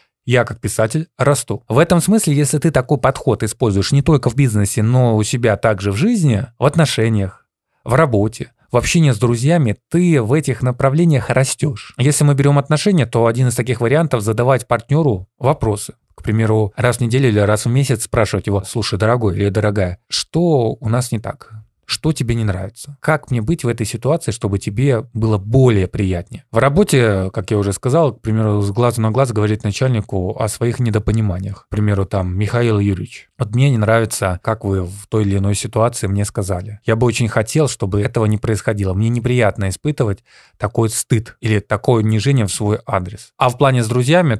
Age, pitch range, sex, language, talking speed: 20-39, 105-135 Hz, male, Russian, 190 wpm